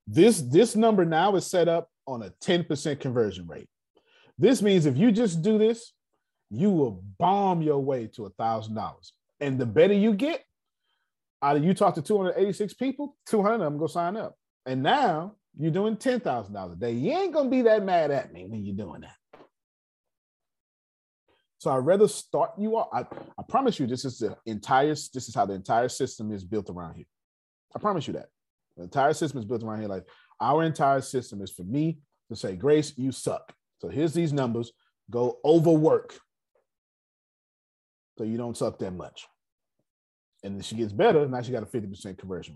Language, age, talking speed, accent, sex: English, 30-49, 190 wpm, American, male